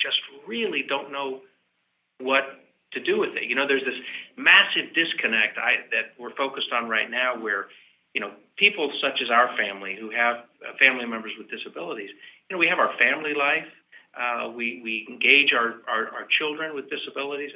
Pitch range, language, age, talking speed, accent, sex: 115-160 Hz, English, 50-69, 180 wpm, American, male